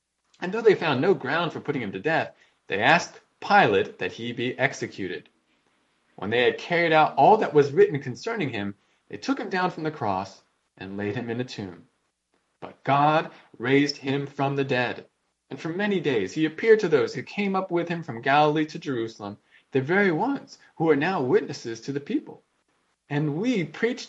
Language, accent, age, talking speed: English, American, 20-39, 195 wpm